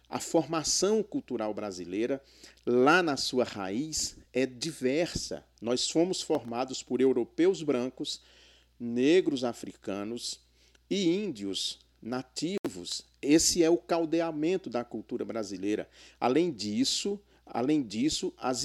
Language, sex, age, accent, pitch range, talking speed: Portuguese, male, 40-59, Brazilian, 120-165 Hz, 105 wpm